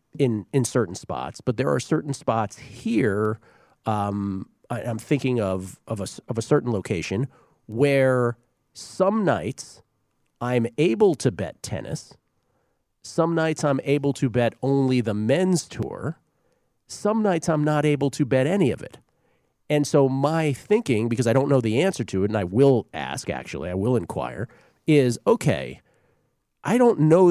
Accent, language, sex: American, English, male